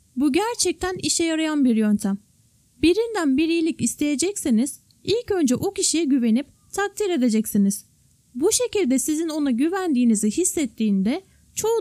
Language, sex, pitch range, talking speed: Turkish, female, 240-360 Hz, 120 wpm